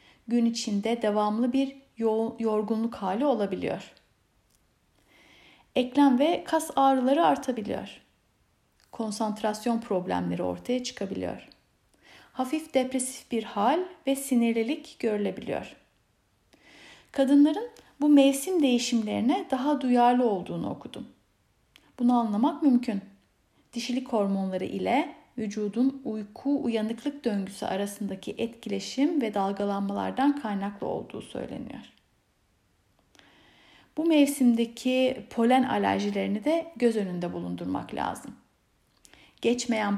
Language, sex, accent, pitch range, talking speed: German, female, Turkish, 210-270 Hz, 85 wpm